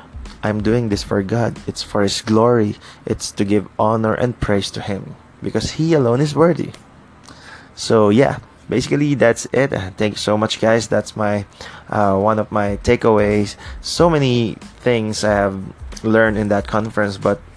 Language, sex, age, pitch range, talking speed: Filipino, male, 20-39, 100-115 Hz, 165 wpm